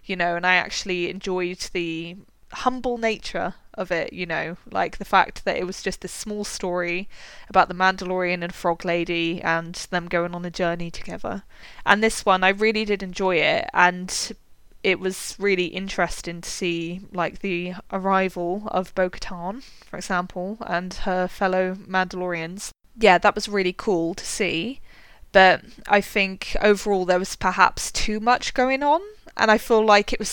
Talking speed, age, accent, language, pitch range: 170 wpm, 20-39, British, English, 175-200 Hz